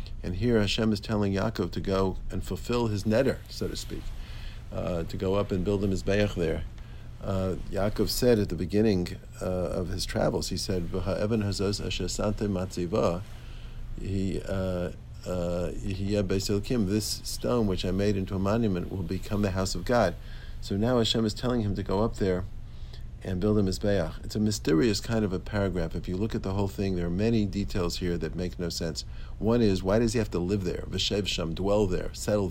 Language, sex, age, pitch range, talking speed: English, male, 50-69, 90-105 Hz, 190 wpm